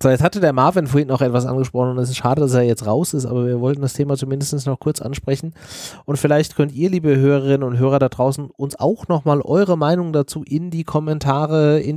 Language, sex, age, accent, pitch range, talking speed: German, male, 30-49, German, 135-160 Hz, 235 wpm